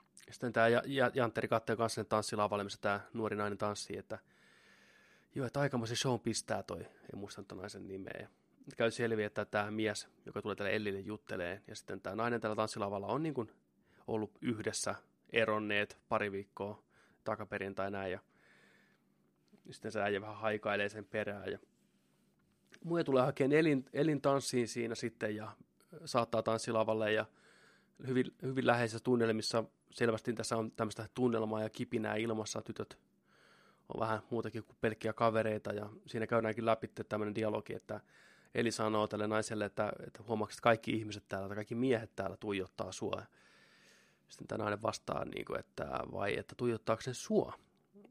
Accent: native